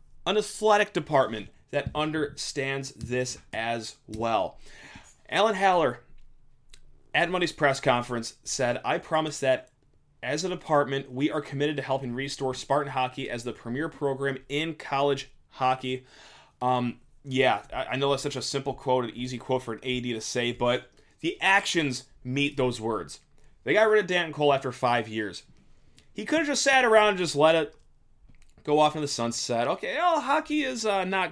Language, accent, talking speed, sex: English, American, 170 wpm, male